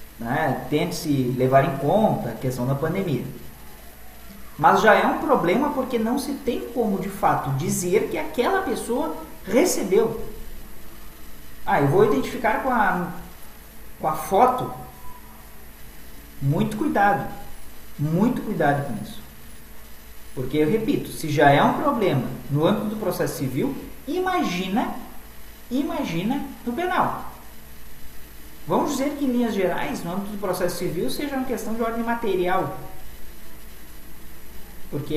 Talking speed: 130 wpm